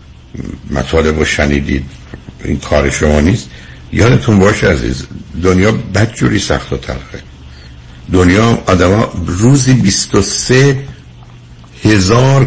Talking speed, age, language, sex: 95 wpm, 60-79, Persian, male